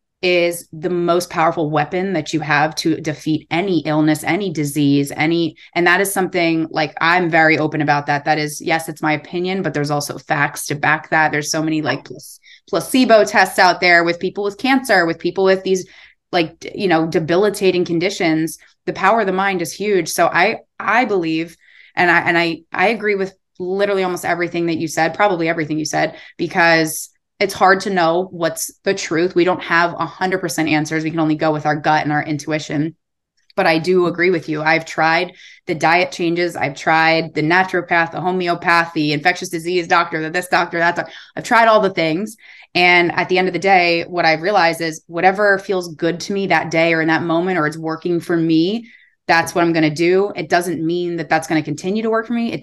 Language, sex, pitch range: English, female, 160-185 Hz